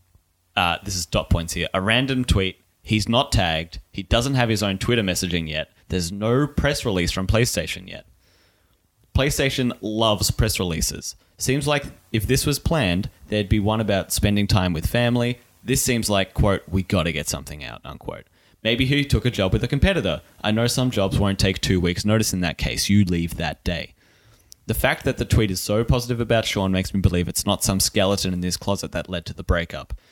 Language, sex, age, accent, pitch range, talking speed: English, male, 30-49, Australian, 90-110 Hz, 210 wpm